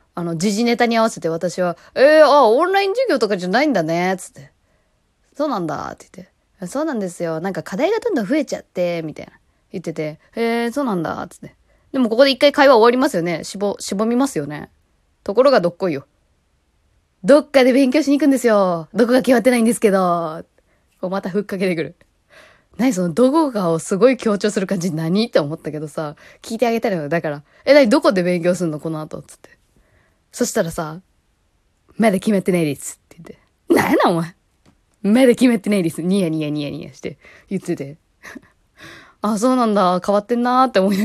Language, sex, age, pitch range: Japanese, female, 20-39, 170-245 Hz